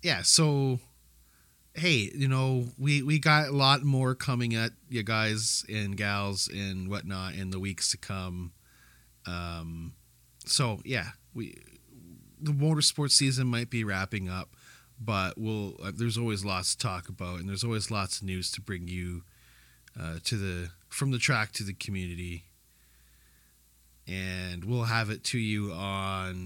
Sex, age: male, 30-49